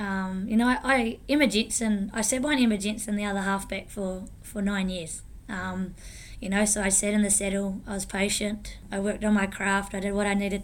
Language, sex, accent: English, female, Australian